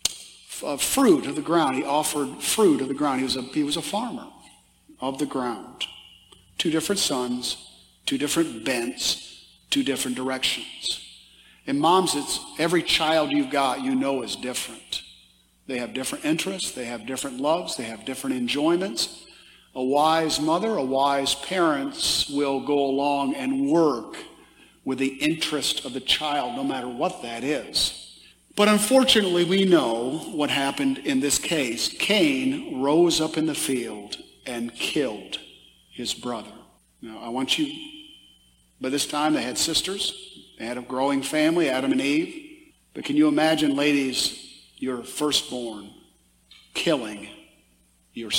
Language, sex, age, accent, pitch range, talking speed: English, male, 50-69, American, 130-190 Hz, 145 wpm